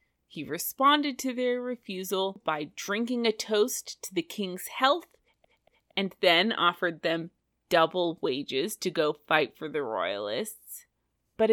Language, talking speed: English, 135 wpm